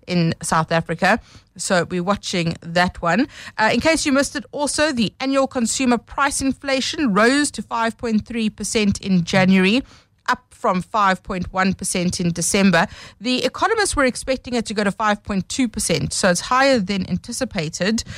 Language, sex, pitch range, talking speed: English, female, 175-230 Hz, 145 wpm